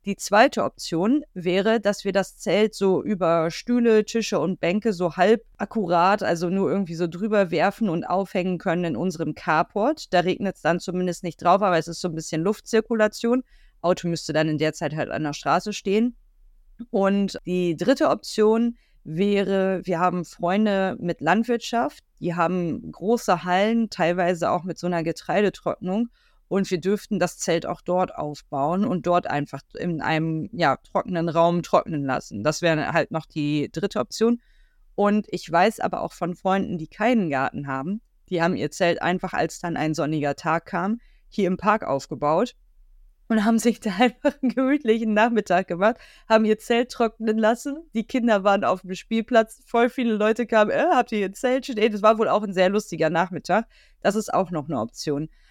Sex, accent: female, German